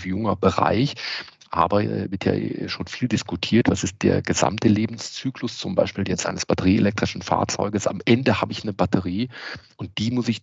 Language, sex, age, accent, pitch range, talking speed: German, male, 40-59, German, 90-110 Hz, 175 wpm